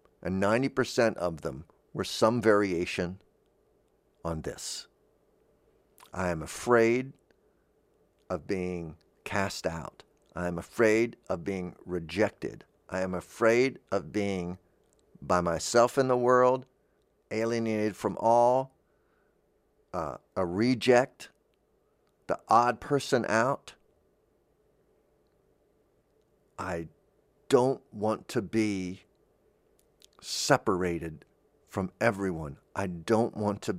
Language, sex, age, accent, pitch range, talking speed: English, male, 50-69, American, 95-125 Hz, 95 wpm